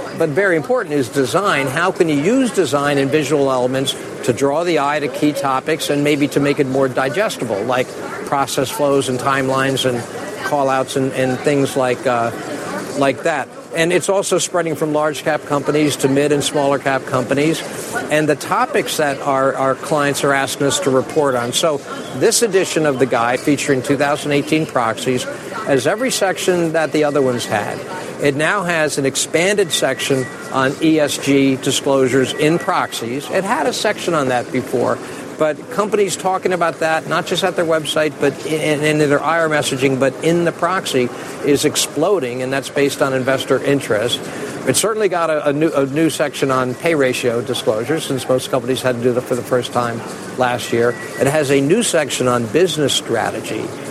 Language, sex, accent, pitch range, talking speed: English, male, American, 130-155 Hz, 185 wpm